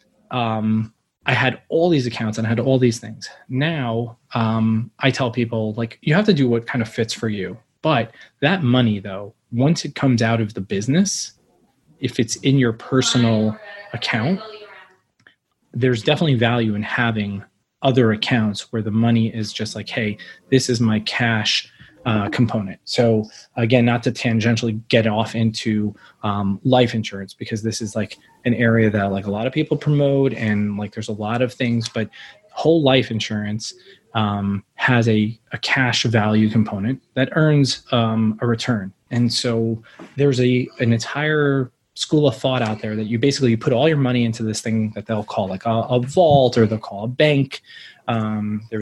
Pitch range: 110-130 Hz